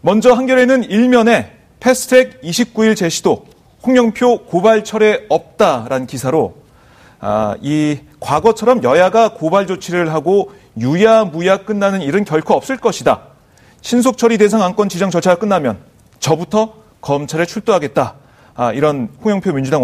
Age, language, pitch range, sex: 40-59, Korean, 155-220 Hz, male